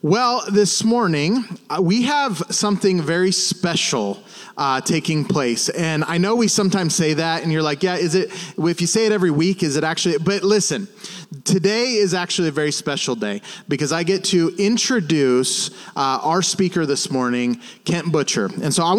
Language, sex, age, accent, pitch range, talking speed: English, male, 30-49, American, 160-205 Hz, 185 wpm